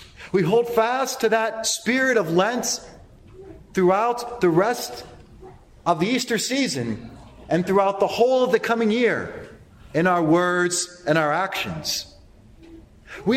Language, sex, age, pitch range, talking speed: English, male, 40-59, 165-235 Hz, 135 wpm